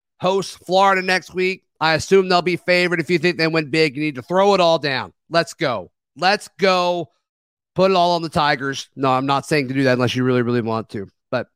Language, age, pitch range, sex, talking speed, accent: English, 30-49, 150-185 Hz, male, 240 wpm, American